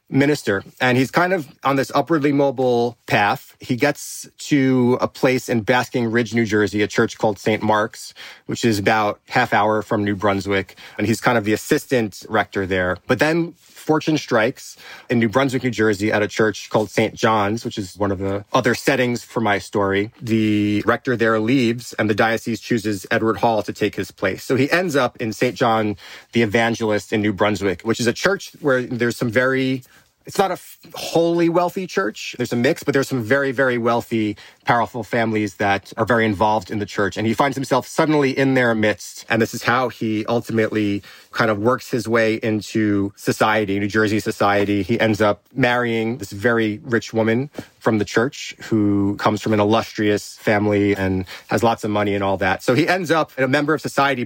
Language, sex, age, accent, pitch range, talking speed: English, male, 30-49, American, 105-130 Hz, 200 wpm